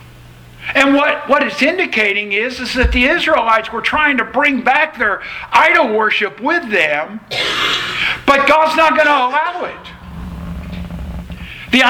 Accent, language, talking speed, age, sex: American, English, 140 wpm, 60-79, male